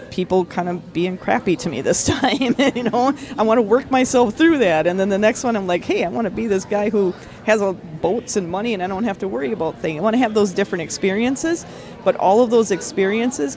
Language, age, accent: English, 40-59, American